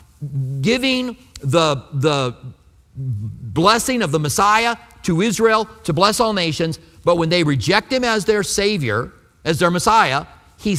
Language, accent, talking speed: English, American, 140 wpm